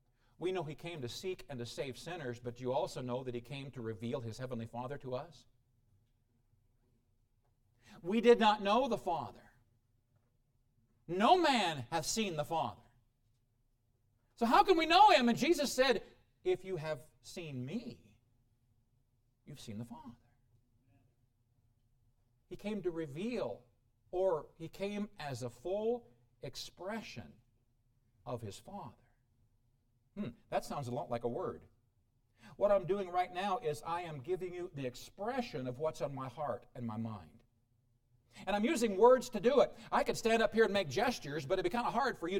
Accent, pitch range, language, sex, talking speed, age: American, 120-180 Hz, English, male, 170 wpm, 50-69